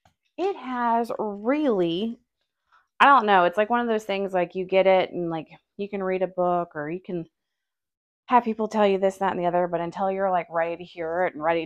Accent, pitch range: American, 170-210 Hz